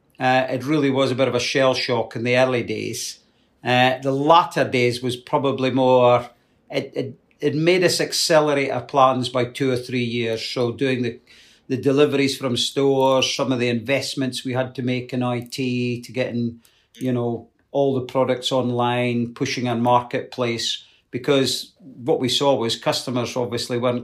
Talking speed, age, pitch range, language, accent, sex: 175 wpm, 50-69, 120-140 Hz, English, British, male